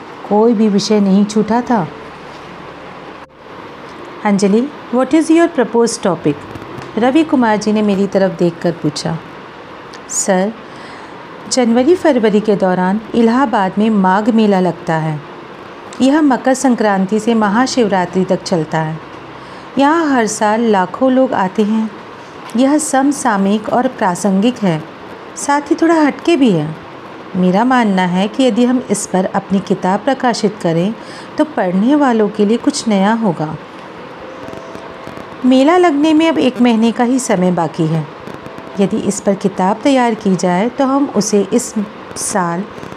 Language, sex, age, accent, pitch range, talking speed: Hindi, female, 50-69, native, 190-255 Hz, 140 wpm